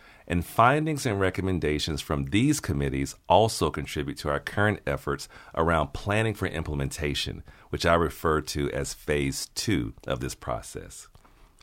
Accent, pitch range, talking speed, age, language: American, 75-105 Hz, 140 wpm, 40-59, English